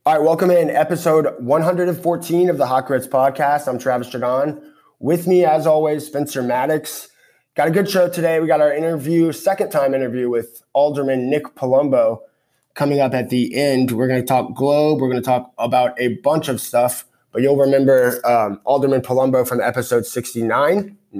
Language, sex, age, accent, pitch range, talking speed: English, male, 20-39, American, 125-150 Hz, 180 wpm